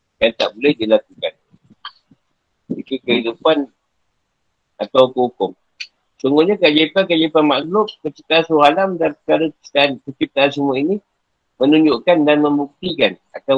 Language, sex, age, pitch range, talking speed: Malay, male, 50-69, 130-160 Hz, 95 wpm